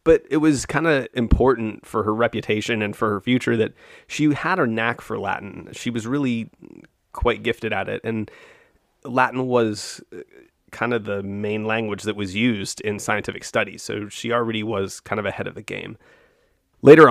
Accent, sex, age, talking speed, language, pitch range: American, male, 30-49, 180 wpm, English, 105-120 Hz